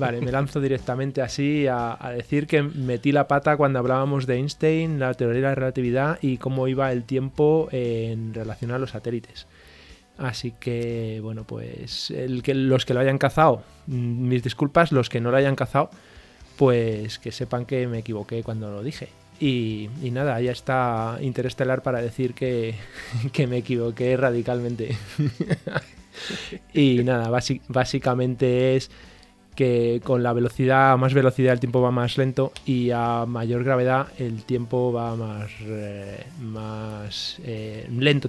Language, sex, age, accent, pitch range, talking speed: Spanish, male, 20-39, Spanish, 120-140 Hz, 160 wpm